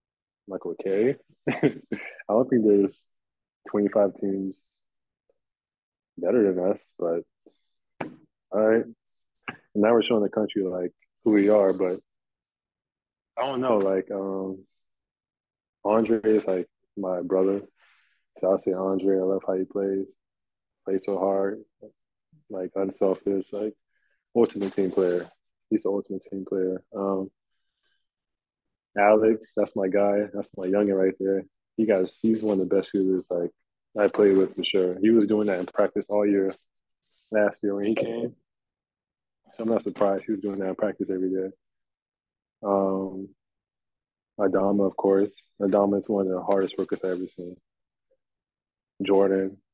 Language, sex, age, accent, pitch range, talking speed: English, male, 20-39, American, 95-105 Hz, 145 wpm